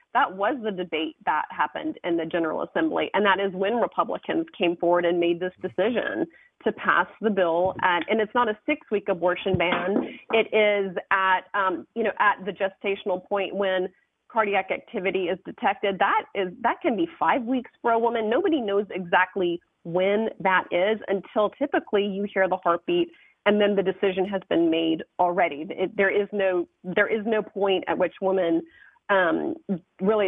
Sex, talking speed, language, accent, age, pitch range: female, 180 wpm, English, American, 30-49, 185-215 Hz